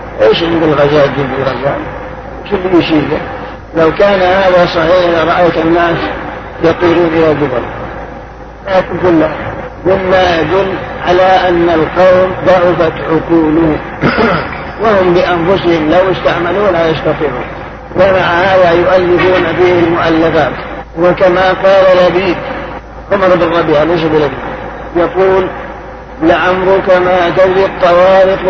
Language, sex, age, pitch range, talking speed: Arabic, male, 50-69, 170-190 Hz, 100 wpm